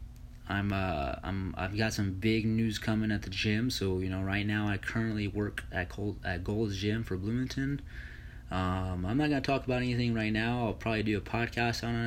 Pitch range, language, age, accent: 90-110 Hz, English, 20-39, American